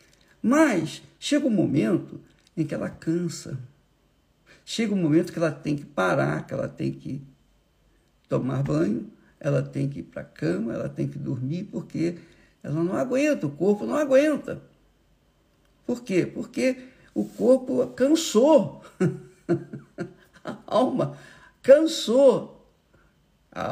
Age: 60-79